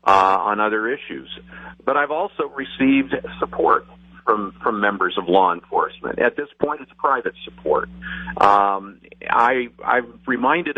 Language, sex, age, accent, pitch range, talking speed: English, male, 50-69, American, 95-115 Hz, 140 wpm